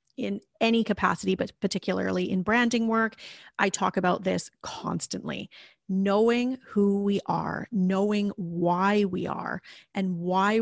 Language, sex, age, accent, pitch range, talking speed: English, female, 30-49, American, 180-225 Hz, 130 wpm